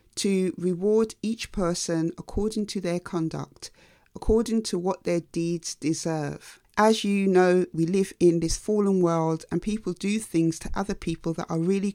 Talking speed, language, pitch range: 165 wpm, English, 165-200 Hz